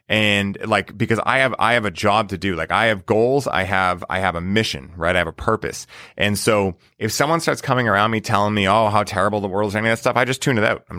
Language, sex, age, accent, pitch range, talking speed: English, male, 30-49, American, 95-115 Hz, 290 wpm